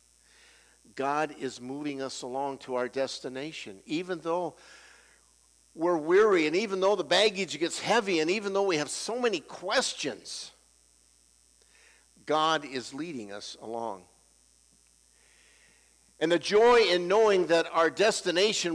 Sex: male